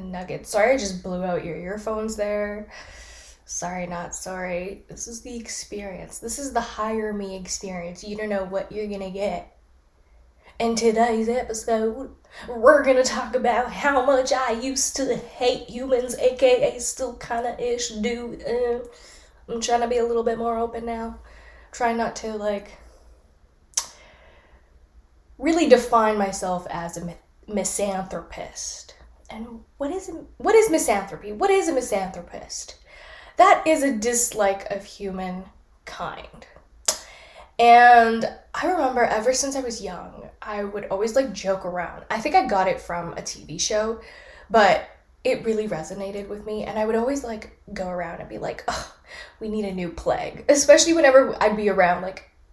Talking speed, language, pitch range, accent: 155 wpm, English, 190-245 Hz, American